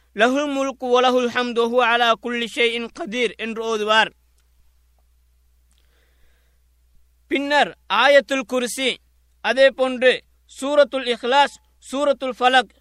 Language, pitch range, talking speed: Tamil, 225-255 Hz, 95 wpm